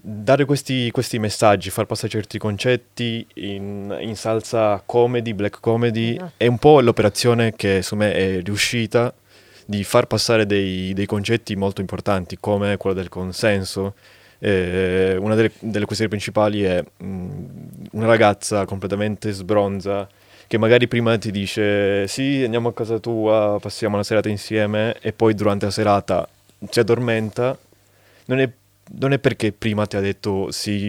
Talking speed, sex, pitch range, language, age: 150 wpm, male, 100-115 Hz, Italian, 20-39